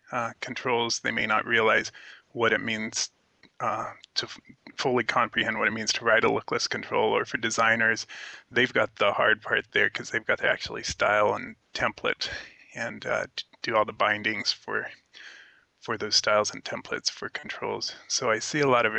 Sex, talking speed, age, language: male, 185 wpm, 30-49, English